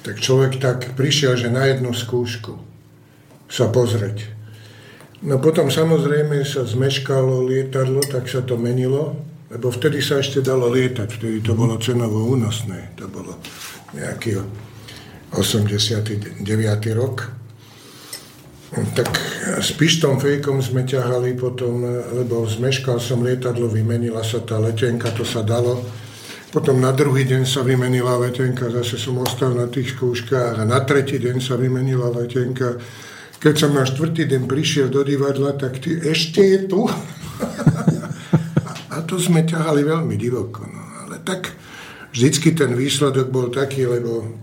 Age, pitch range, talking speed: 60-79, 120-140 Hz, 140 wpm